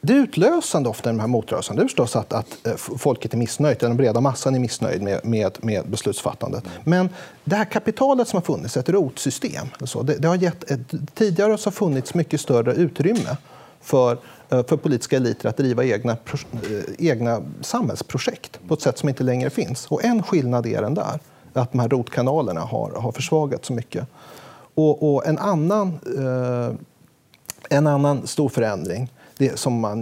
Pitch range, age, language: 120-160 Hz, 40-59, Swedish